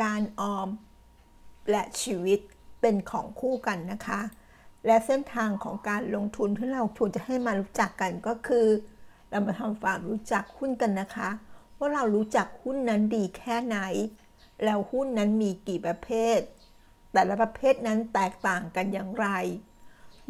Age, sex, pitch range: 60-79, female, 195-235 Hz